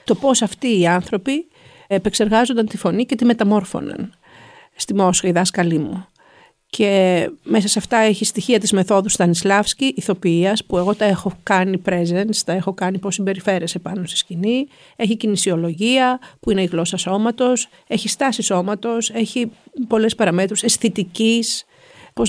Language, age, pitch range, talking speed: Greek, 50-69, 190-235 Hz, 150 wpm